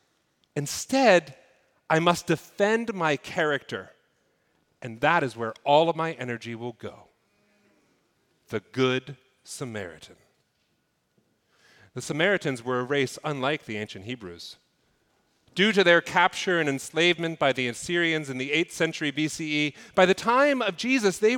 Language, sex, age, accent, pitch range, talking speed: English, male, 40-59, American, 135-200 Hz, 135 wpm